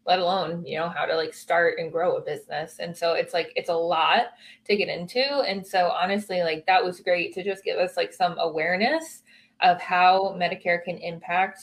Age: 20-39